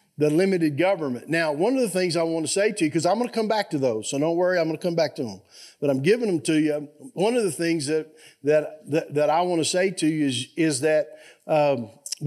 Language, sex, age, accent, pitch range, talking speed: English, male, 50-69, American, 140-165 Hz, 270 wpm